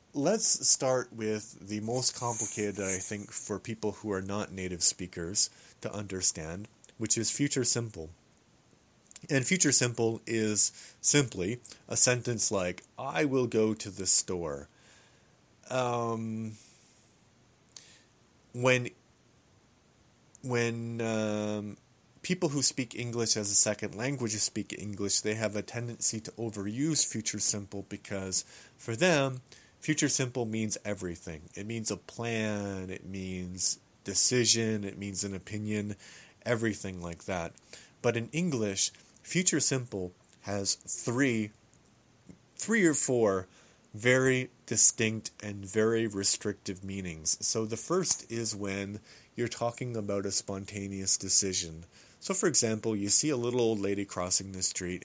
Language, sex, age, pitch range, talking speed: English, male, 30-49, 100-120 Hz, 130 wpm